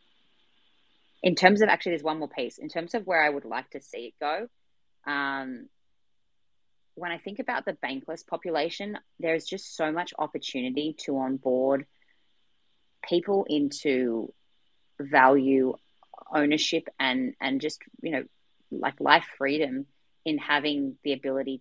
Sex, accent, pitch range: female, Australian, 130-155 Hz